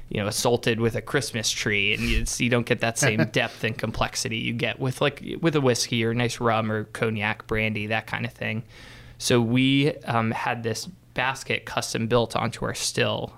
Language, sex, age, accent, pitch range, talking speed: English, male, 20-39, American, 115-125 Hz, 205 wpm